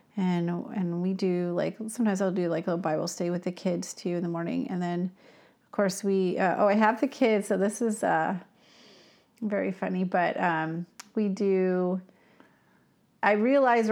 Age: 30-49